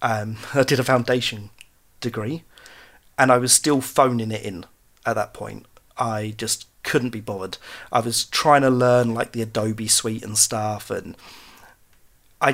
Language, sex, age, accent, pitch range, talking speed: English, male, 30-49, British, 110-130 Hz, 165 wpm